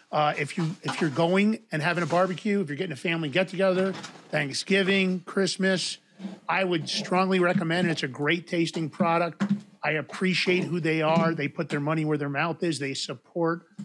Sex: male